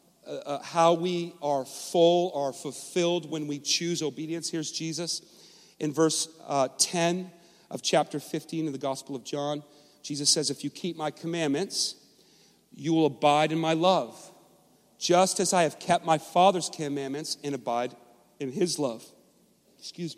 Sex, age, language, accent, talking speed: male, 40-59, English, American, 155 wpm